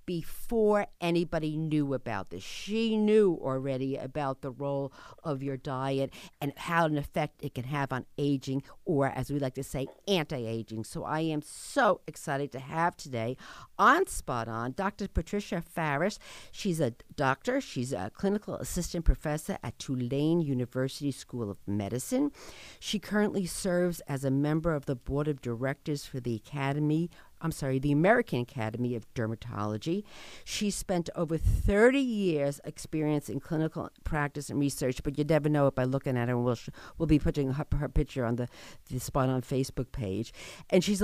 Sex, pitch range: female, 130-180 Hz